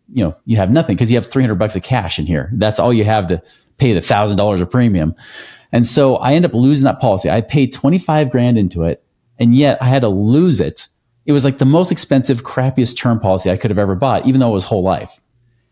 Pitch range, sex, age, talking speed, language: 105-140 Hz, male, 40-59, 250 wpm, English